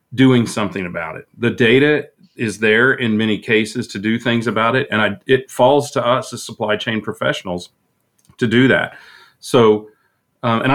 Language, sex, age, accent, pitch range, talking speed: English, male, 40-59, American, 100-120 Hz, 180 wpm